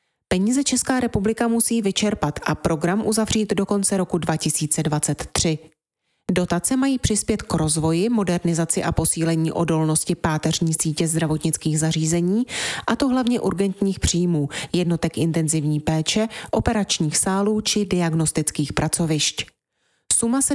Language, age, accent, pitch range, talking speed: Czech, 30-49, native, 160-210 Hz, 115 wpm